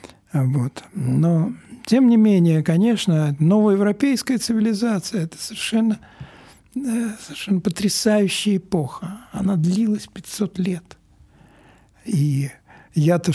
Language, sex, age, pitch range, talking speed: Russian, male, 60-79, 145-205 Hz, 100 wpm